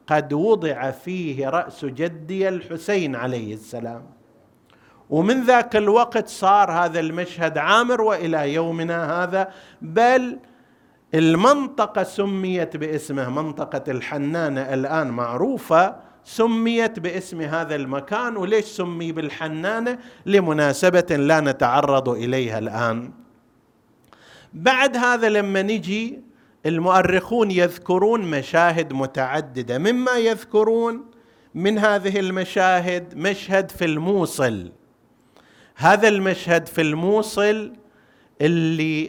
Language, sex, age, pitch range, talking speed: Arabic, male, 50-69, 150-205 Hz, 90 wpm